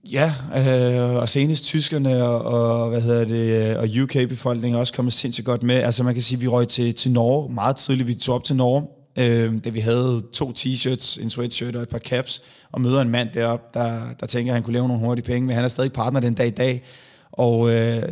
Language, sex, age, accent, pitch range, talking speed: Danish, male, 20-39, native, 115-130 Hz, 235 wpm